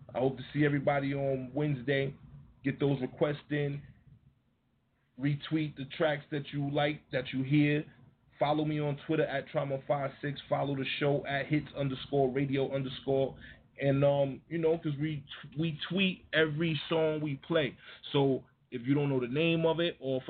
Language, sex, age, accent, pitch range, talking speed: English, male, 30-49, American, 130-145 Hz, 165 wpm